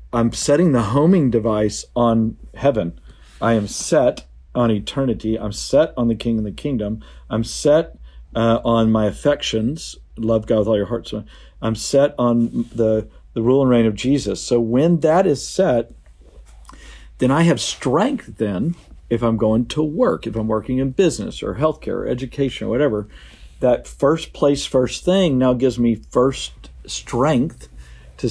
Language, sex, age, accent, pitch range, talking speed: English, male, 50-69, American, 110-135 Hz, 165 wpm